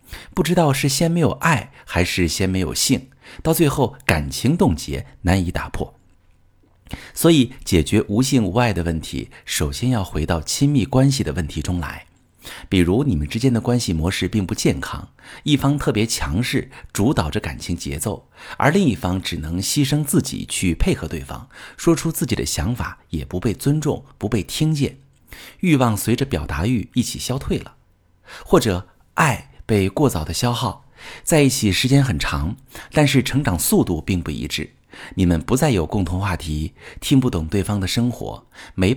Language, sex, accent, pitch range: Chinese, male, native, 85-125 Hz